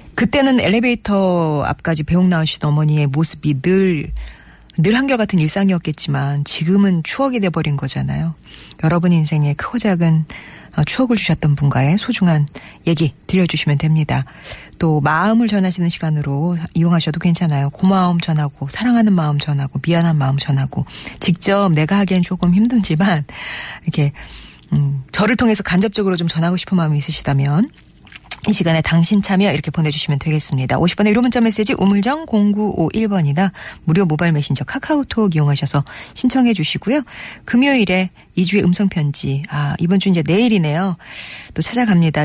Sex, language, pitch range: female, Korean, 150-205 Hz